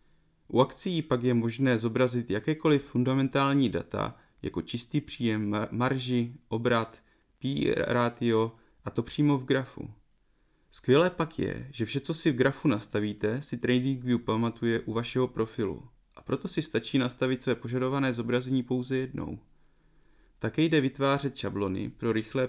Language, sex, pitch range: Czech, male, 115-140 Hz